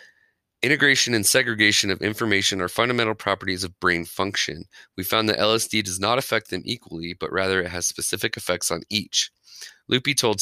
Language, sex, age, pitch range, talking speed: English, male, 30-49, 90-115 Hz, 175 wpm